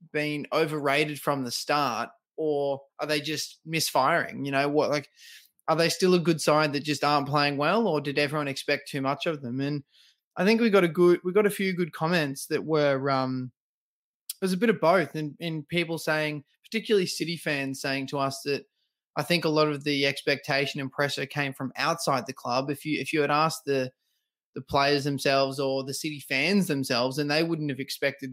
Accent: Australian